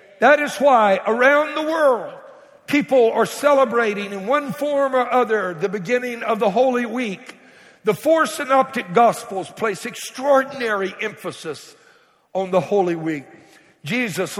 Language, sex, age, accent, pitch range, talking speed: English, male, 60-79, American, 190-250 Hz, 135 wpm